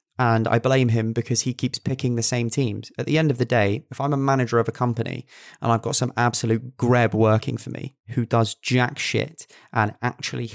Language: English